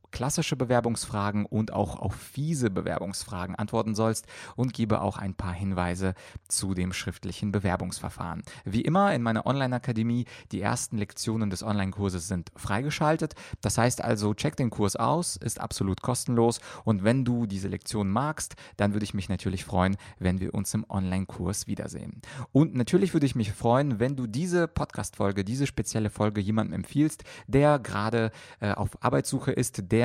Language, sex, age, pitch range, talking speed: German, male, 30-49, 100-125 Hz, 160 wpm